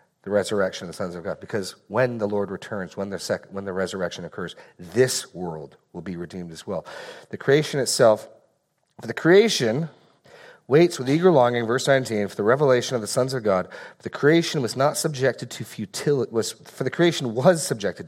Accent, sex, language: American, male, English